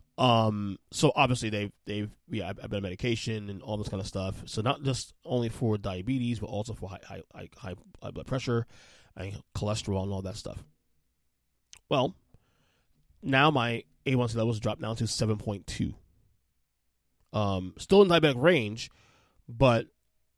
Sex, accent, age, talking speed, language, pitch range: male, American, 20-39, 150 wpm, English, 105-130 Hz